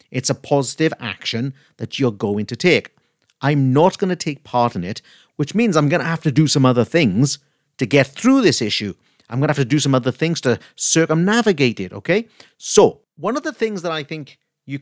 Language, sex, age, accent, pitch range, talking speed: English, male, 50-69, British, 120-160 Hz, 225 wpm